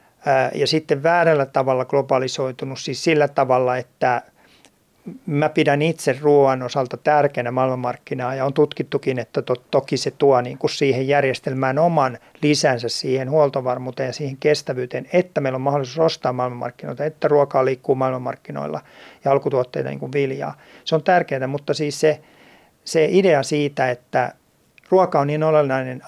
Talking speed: 145 wpm